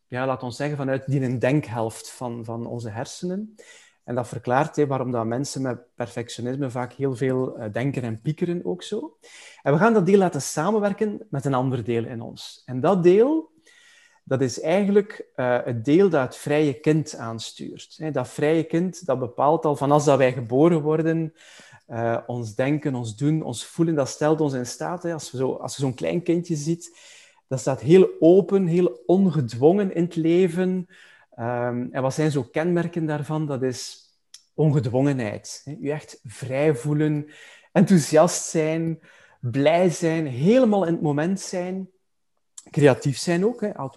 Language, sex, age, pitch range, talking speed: Dutch, male, 30-49, 125-170 Hz, 160 wpm